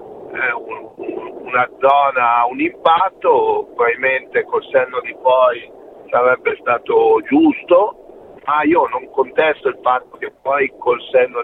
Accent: native